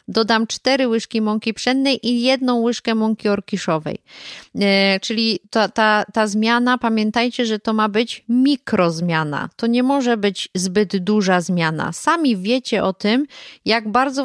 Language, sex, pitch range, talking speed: Polish, female, 195-235 Hz, 145 wpm